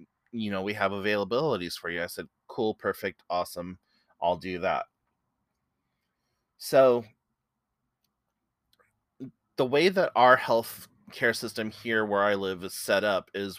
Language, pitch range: English, 95-115 Hz